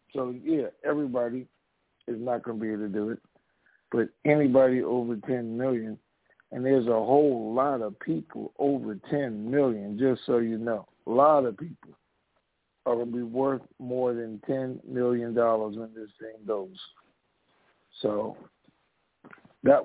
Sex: male